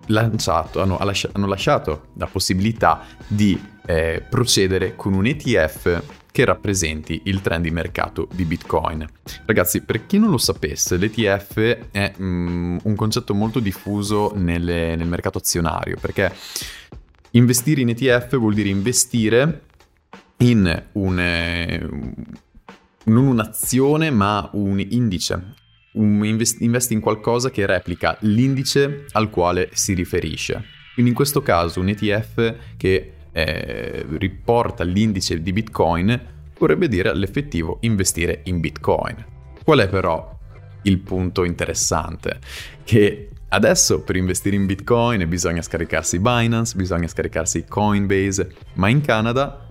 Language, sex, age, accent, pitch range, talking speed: Italian, male, 30-49, native, 90-115 Hz, 120 wpm